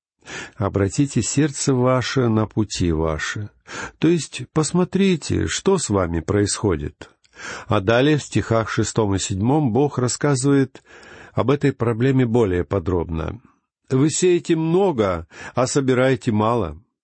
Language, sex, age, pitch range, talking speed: Russian, male, 50-69, 105-145 Hz, 115 wpm